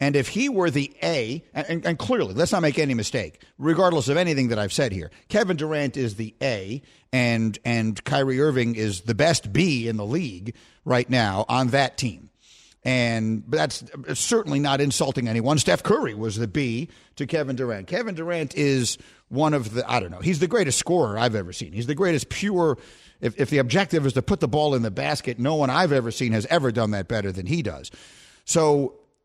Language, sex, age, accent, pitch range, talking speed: English, male, 50-69, American, 115-150 Hz, 210 wpm